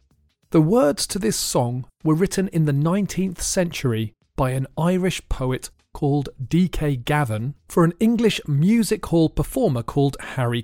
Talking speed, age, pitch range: 145 wpm, 40-59, 125-180 Hz